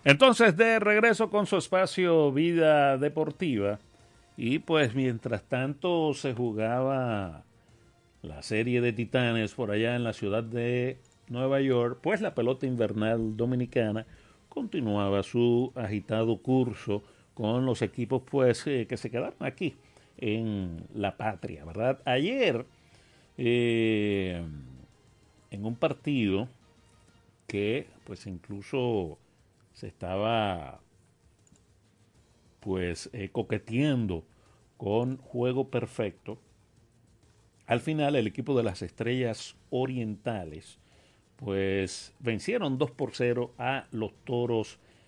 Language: Spanish